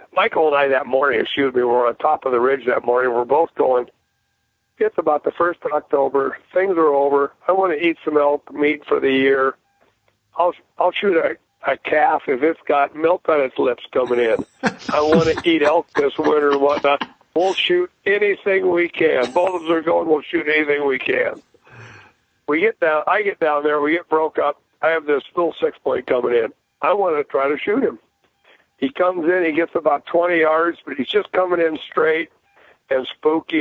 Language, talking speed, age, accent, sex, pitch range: English, 210 wpm, 60-79, American, male, 135-180 Hz